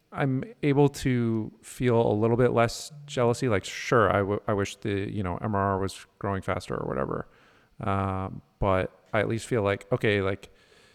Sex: male